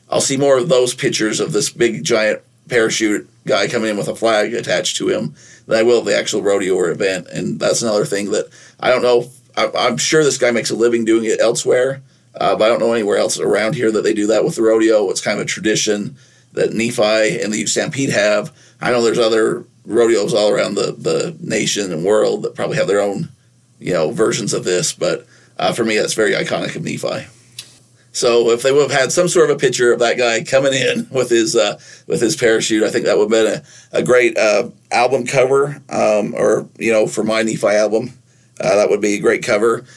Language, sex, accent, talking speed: English, male, American, 235 wpm